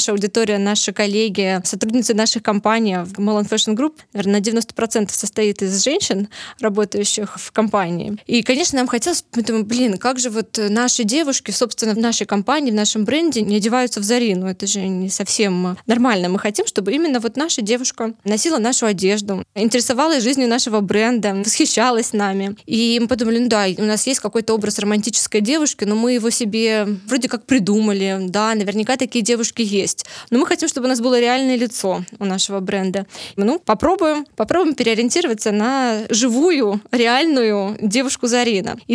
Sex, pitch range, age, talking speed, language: female, 210-250 Hz, 20-39, 170 wpm, Russian